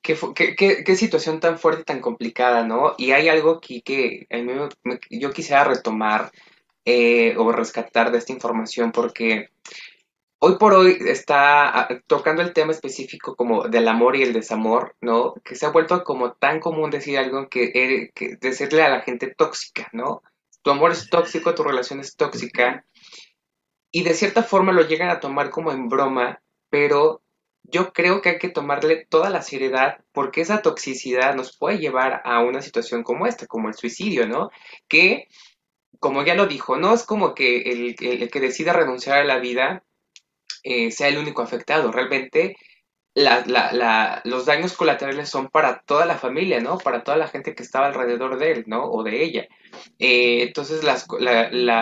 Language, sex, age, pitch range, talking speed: Spanish, male, 20-39, 120-160 Hz, 175 wpm